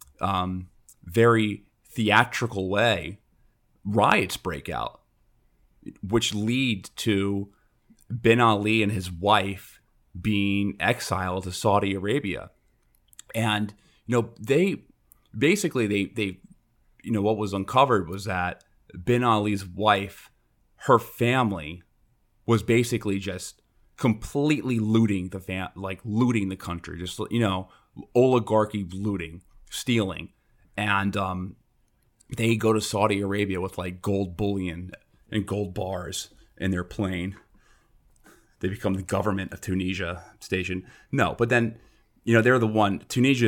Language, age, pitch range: English, 30-49, 95-110 Hz